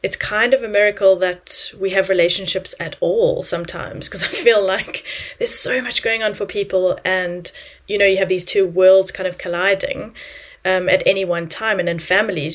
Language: English